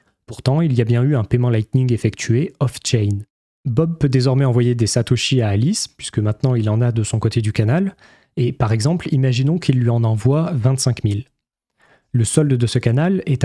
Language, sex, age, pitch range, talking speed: French, male, 20-39, 115-140 Hz, 200 wpm